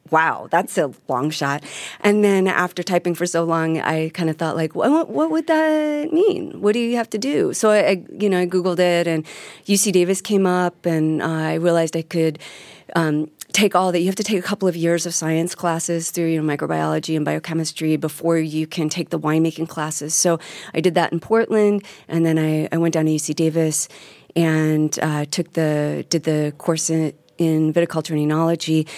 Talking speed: 205 wpm